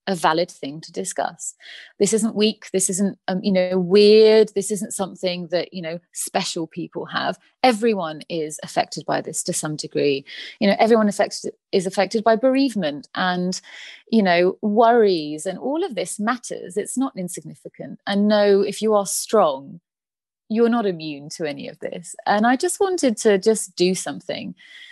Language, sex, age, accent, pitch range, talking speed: English, female, 30-49, British, 170-220 Hz, 170 wpm